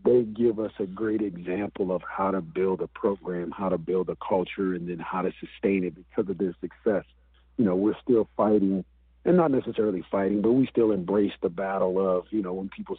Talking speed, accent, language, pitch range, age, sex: 215 wpm, American, English, 95-110 Hz, 50-69, male